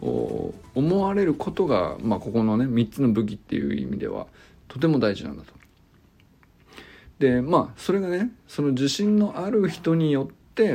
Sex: male